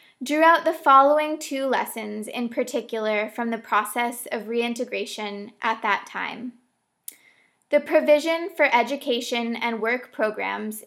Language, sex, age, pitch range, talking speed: English, female, 20-39, 220-270 Hz, 125 wpm